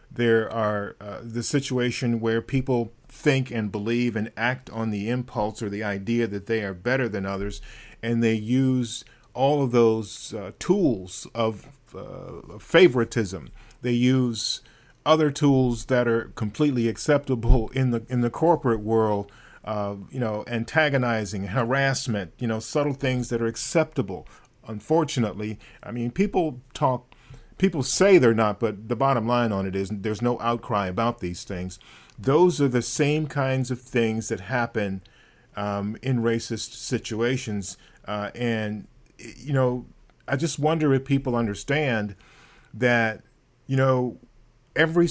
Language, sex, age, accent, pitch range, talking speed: English, male, 40-59, American, 110-130 Hz, 145 wpm